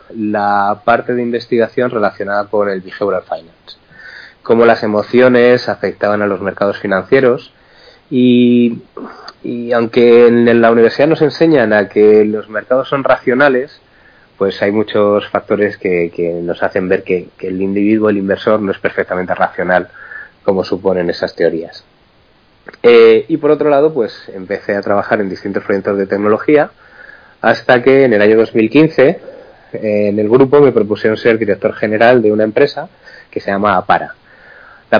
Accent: Spanish